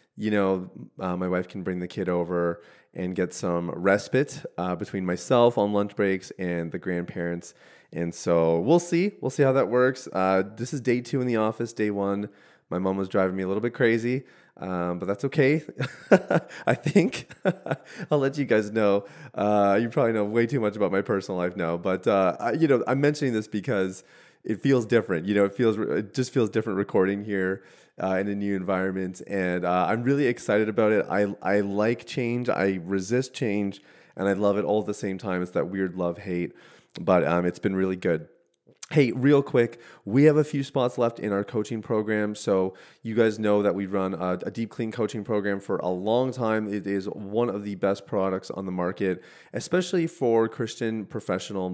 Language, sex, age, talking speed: English, male, 30-49, 205 wpm